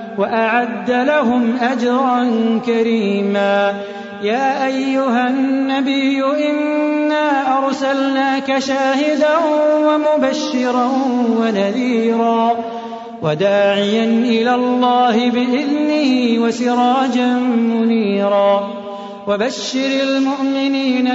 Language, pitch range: Arabic, 225-260 Hz